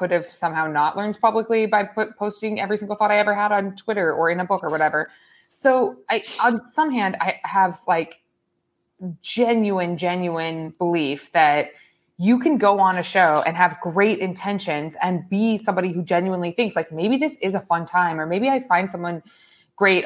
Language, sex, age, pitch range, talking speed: English, female, 20-39, 165-215 Hz, 190 wpm